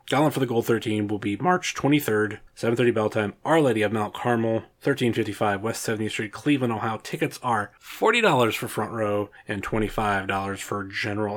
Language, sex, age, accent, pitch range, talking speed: English, male, 20-39, American, 105-120 Hz, 175 wpm